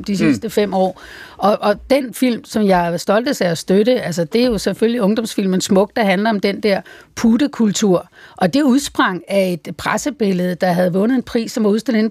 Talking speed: 205 wpm